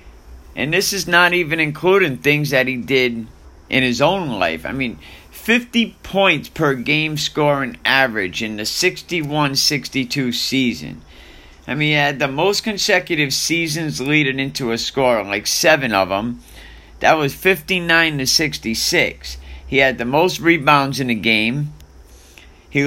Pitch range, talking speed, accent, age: 100-160 Hz, 145 wpm, American, 50-69